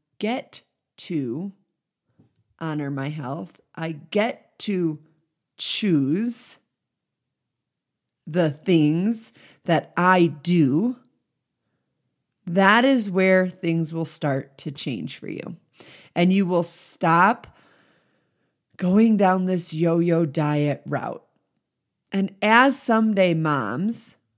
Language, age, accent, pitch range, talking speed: English, 30-49, American, 155-200 Hz, 95 wpm